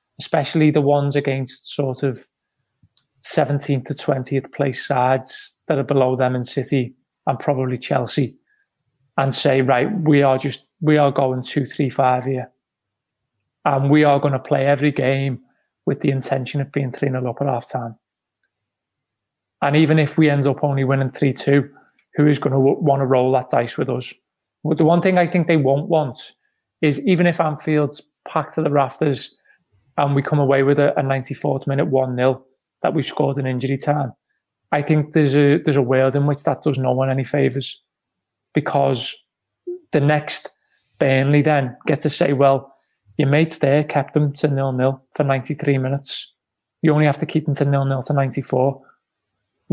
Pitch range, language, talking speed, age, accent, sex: 135-150 Hz, English, 180 wpm, 30-49, British, male